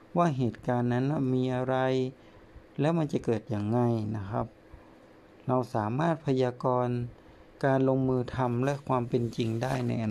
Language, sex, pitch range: Thai, male, 115-145 Hz